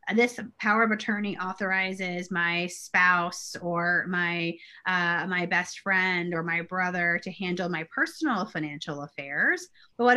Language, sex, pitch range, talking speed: English, female, 160-200 Hz, 140 wpm